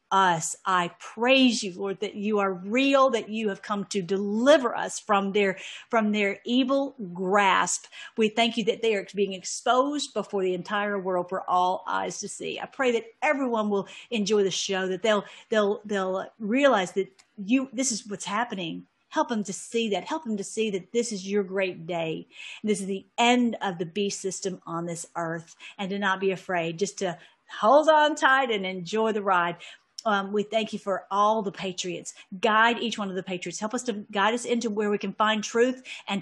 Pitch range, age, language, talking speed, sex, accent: 195-235 Hz, 50-69, English, 205 wpm, female, American